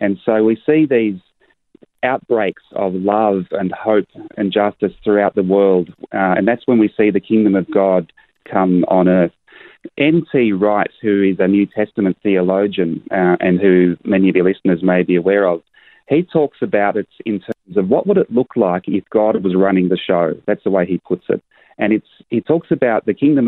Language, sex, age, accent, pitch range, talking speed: English, male, 30-49, Australian, 95-110 Hz, 200 wpm